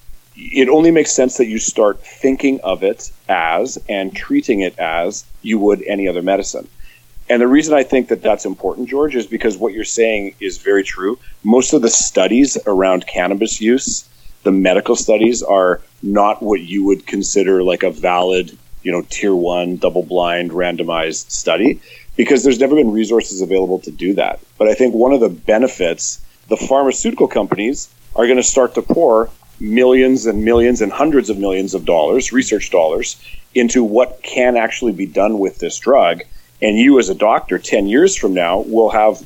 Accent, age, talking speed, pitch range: American, 40-59, 185 wpm, 95-125 Hz